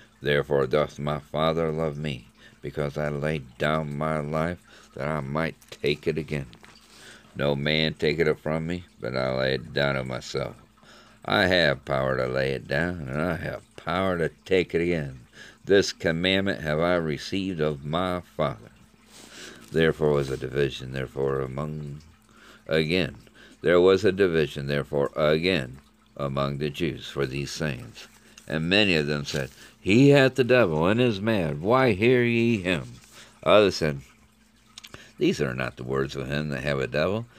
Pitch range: 70-80 Hz